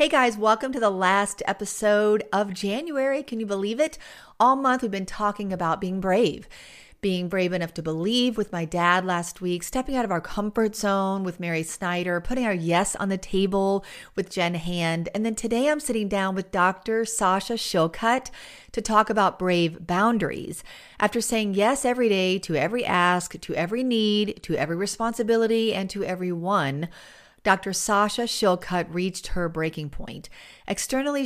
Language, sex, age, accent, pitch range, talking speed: English, female, 40-59, American, 175-225 Hz, 170 wpm